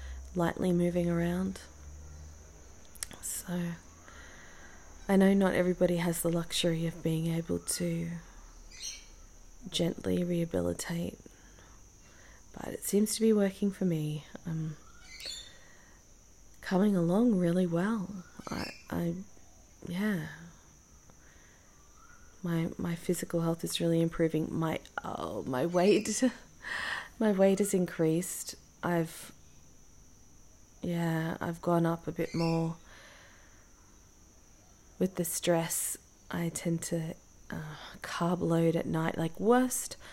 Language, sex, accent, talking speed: English, female, Australian, 105 wpm